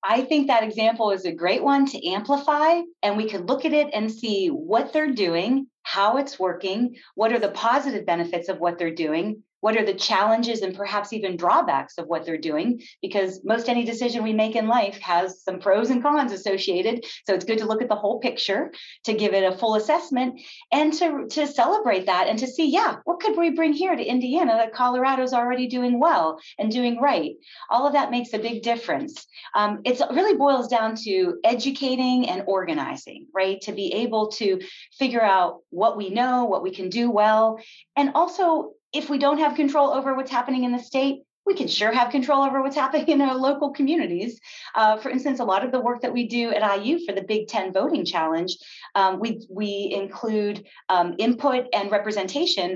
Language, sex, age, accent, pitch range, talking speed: English, female, 40-59, American, 195-270 Hz, 205 wpm